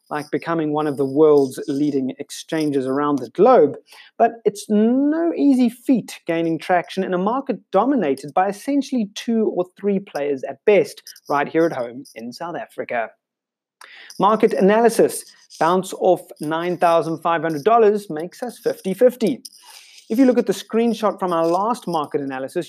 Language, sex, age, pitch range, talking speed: English, male, 30-49, 160-220 Hz, 150 wpm